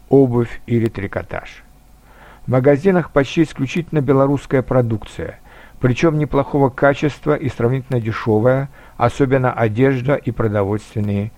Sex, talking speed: male, 100 wpm